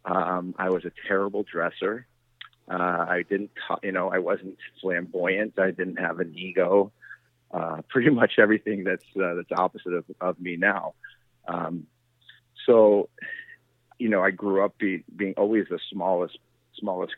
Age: 40-59